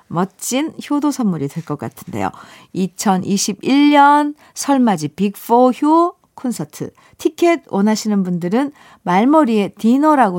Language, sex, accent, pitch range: Korean, female, native, 185-260 Hz